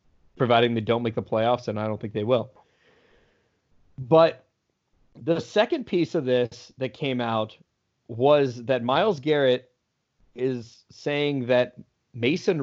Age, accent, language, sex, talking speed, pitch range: 30-49, American, English, male, 140 wpm, 115-150 Hz